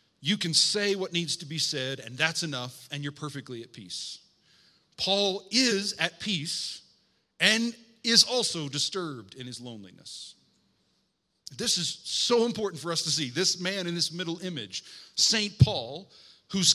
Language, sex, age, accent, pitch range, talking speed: English, male, 40-59, American, 140-195 Hz, 160 wpm